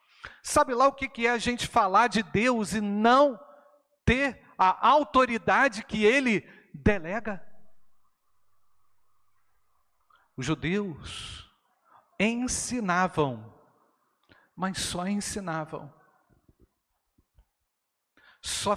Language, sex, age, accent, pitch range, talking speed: Portuguese, male, 50-69, Brazilian, 165-245 Hz, 80 wpm